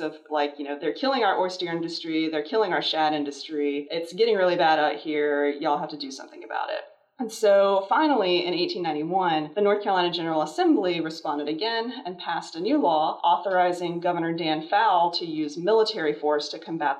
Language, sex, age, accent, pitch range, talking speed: English, female, 30-49, American, 150-205 Hz, 190 wpm